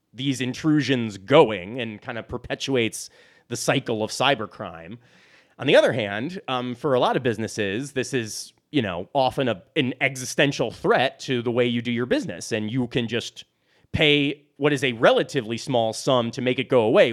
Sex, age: male, 30-49